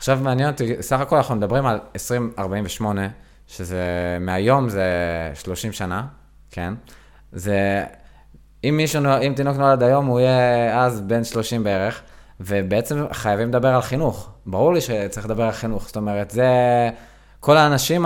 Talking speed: 150 wpm